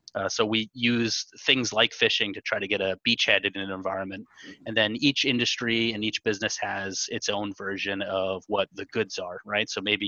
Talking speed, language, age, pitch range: 210 wpm, English, 30-49, 95-110 Hz